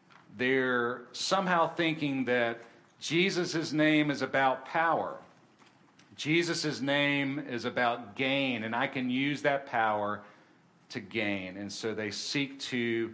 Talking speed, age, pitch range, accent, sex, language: 125 wpm, 40-59, 120-150 Hz, American, male, English